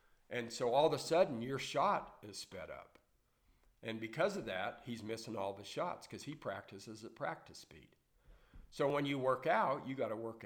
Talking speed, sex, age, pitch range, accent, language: 195 wpm, male, 50-69, 110-135 Hz, American, English